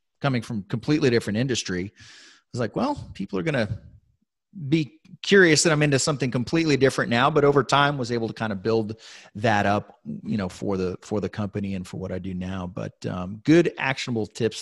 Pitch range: 100-125 Hz